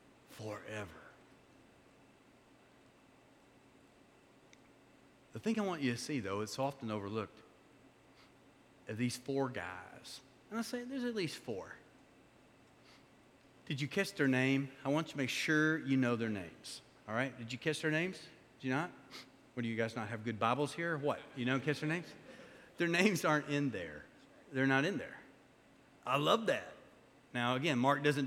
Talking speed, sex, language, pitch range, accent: 170 wpm, male, English, 130-170 Hz, American